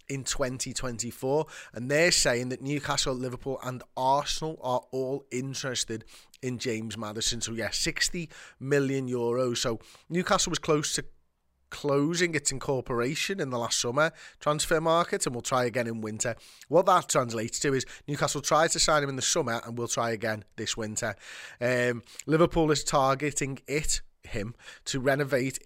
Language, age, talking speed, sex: English, 30-49, 160 wpm, male